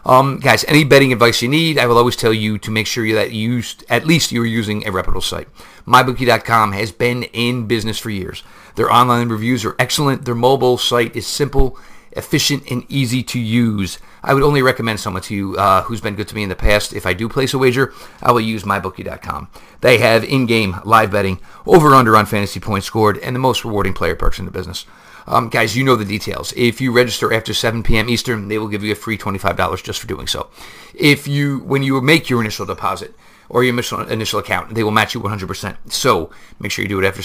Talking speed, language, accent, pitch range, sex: 230 wpm, English, American, 105-125 Hz, male